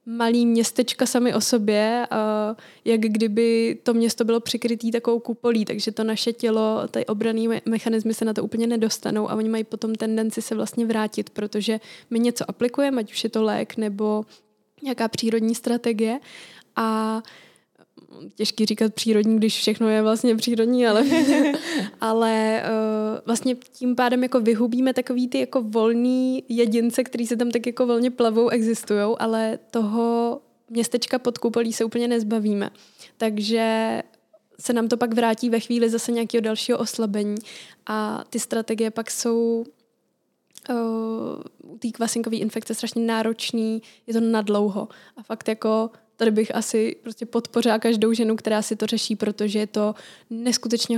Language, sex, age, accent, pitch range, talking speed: Czech, female, 20-39, native, 220-235 Hz, 150 wpm